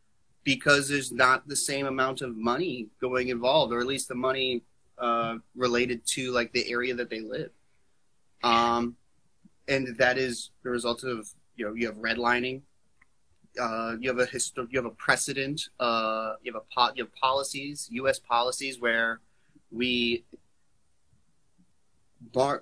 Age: 30-49